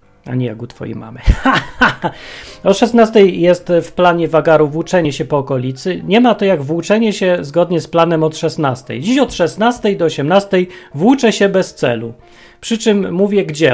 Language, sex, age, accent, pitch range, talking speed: Polish, male, 30-49, native, 130-175 Hz, 175 wpm